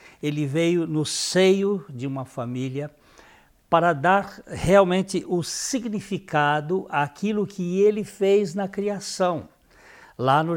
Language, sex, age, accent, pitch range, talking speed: Portuguese, male, 60-79, Brazilian, 135-185 Hz, 115 wpm